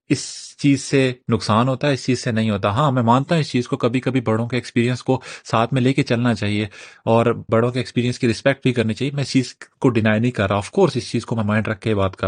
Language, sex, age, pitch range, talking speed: Urdu, male, 30-49, 120-155 Hz, 285 wpm